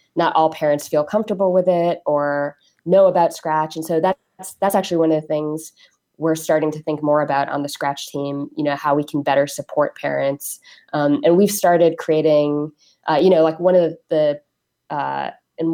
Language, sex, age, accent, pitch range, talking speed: English, female, 20-39, American, 145-165 Hz, 200 wpm